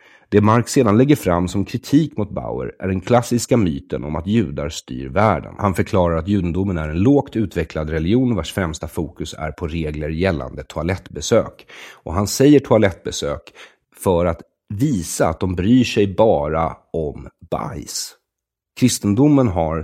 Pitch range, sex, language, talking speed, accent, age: 80-115 Hz, male, English, 155 wpm, Swedish, 40-59